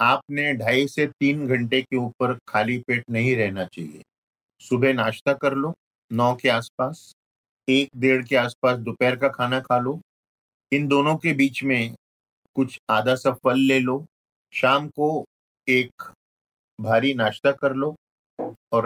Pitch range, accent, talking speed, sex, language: 120-140 Hz, native, 150 wpm, male, Hindi